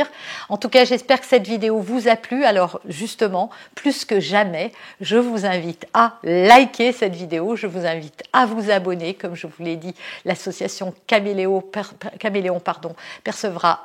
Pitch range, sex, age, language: 185-240 Hz, female, 50-69, French